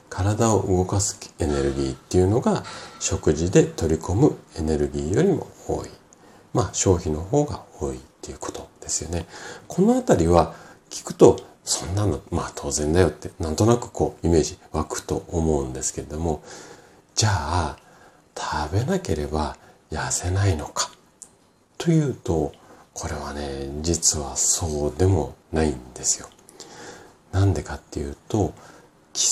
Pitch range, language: 75-100 Hz, Japanese